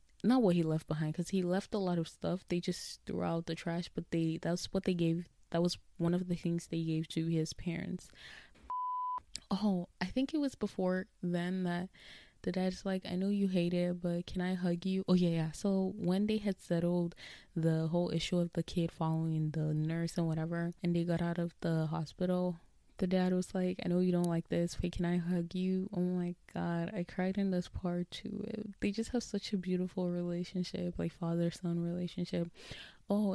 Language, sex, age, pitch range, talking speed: English, female, 20-39, 170-190 Hz, 210 wpm